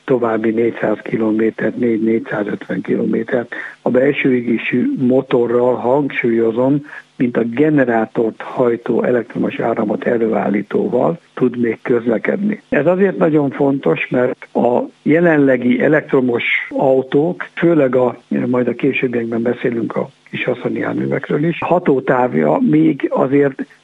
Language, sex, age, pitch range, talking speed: Hungarian, male, 60-79, 120-150 Hz, 105 wpm